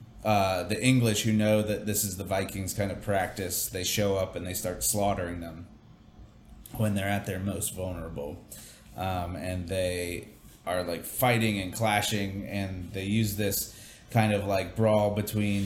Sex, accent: male, American